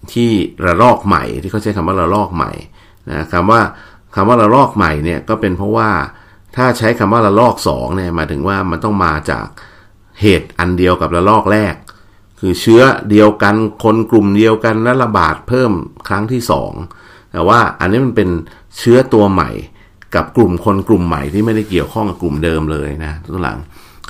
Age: 60-79